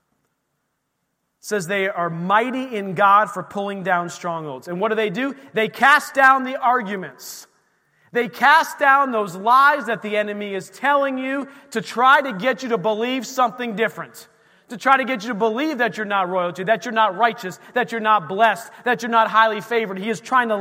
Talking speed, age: 200 wpm, 40-59